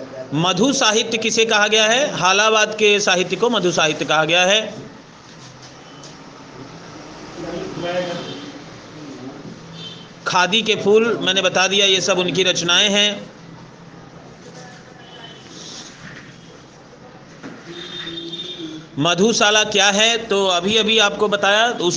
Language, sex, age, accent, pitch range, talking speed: Hindi, male, 40-59, native, 165-200 Hz, 100 wpm